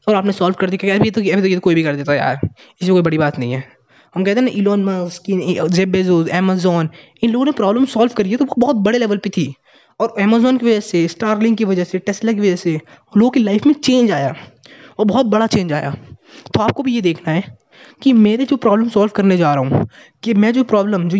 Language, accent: Hindi, native